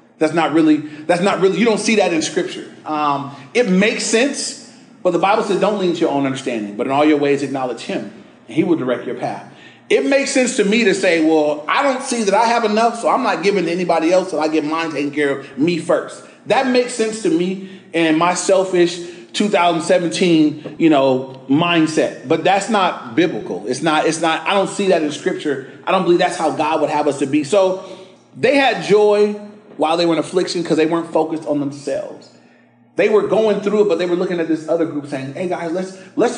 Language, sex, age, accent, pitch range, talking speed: English, male, 30-49, American, 155-205 Hz, 235 wpm